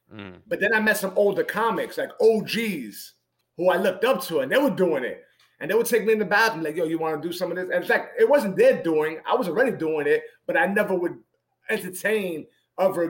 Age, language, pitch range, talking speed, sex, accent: 30-49, English, 160-235 Hz, 245 wpm, male, American